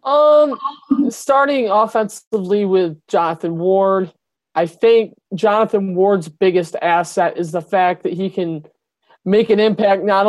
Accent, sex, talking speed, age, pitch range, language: American, male, 130 wpm, 30-49, 190-220 Hz, English